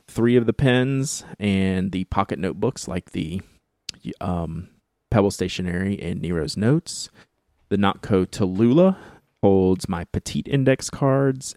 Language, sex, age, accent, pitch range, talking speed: English, male, 30-49, American, 90-110 Hz, 125 wpm